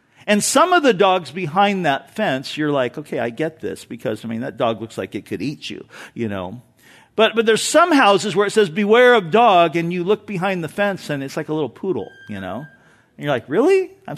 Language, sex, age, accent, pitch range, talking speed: English, male, 50-69, American, 140-225 Hz, 240 wpm